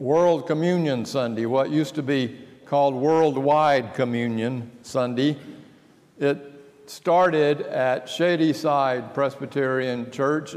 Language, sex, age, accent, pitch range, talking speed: English, male, 60-79, American, 130-160 Hz, 95 wpm